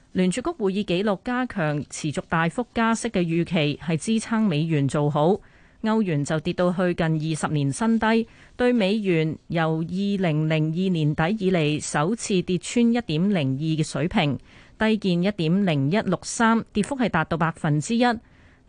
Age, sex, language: 30-49, female, Chinese